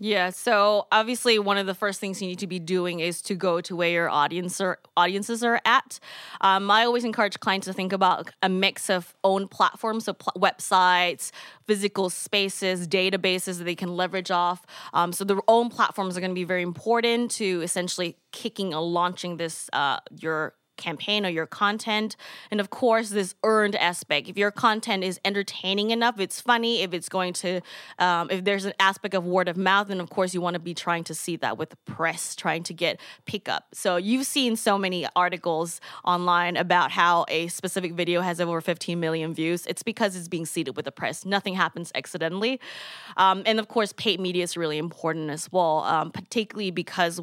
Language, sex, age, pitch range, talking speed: English, female, 20-39, 175-200 Hz, 200 wpm